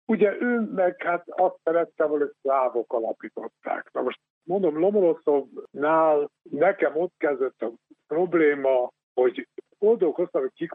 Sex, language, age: male, Hungarian, 60-79